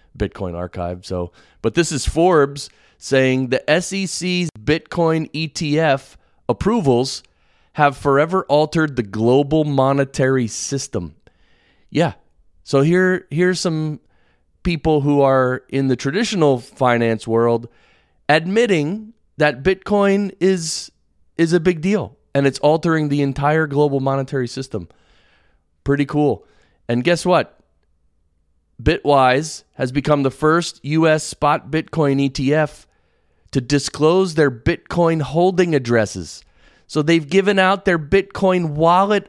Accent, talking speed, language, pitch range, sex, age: American, 115 wpm, English, 115-165 Hz, male, 30-49